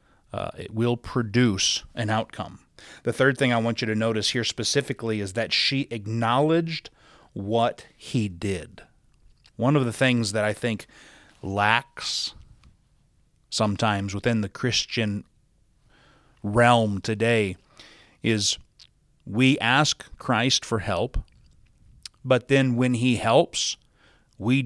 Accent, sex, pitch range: American, male, 110-135 Hz